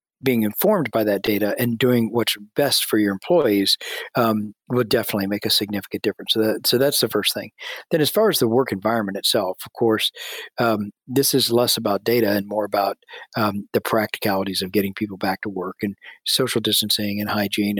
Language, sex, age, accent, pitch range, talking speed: English, male, 40-59, American, 105-120 Hz, 195 wpm